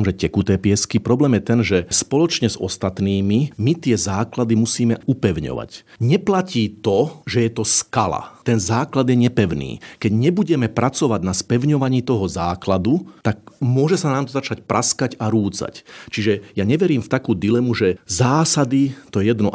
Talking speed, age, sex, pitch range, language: 160 wpm, 40-59, male, 100-135 Hz, Slovak